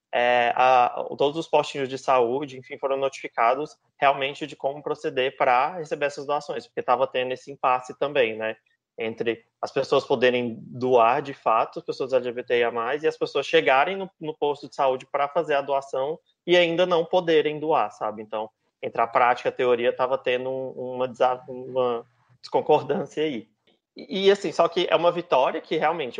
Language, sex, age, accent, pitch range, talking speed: Portuguese, male, 20-39, Brazilian, 130-170 Hz, 180 wpm